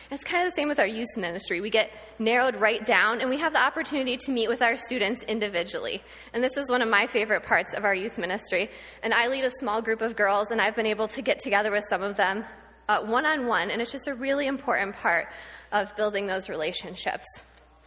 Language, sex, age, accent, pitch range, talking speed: English, female, 20-39, American, 210-260 Hz, 230 wpm